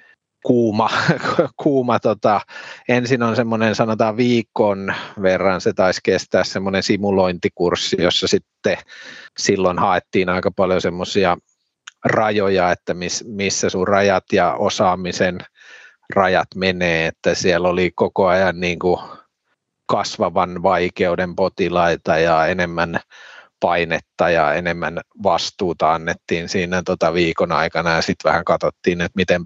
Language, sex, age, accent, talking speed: Finnish, male, 30-49, native, 110 wpm